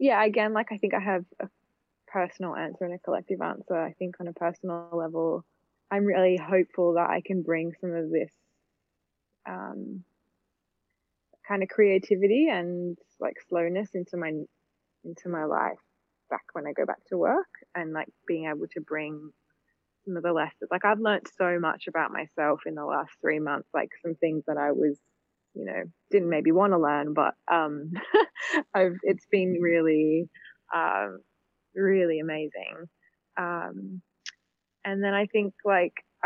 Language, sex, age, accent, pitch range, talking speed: English, female, 20-39, Australian, 160-195 Hz, 165 wpm